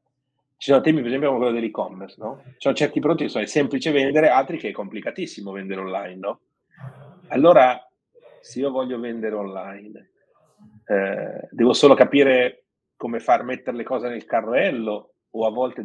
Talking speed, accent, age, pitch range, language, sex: 165 wpm, native, 30-49, 105-140 Hz, Italian, male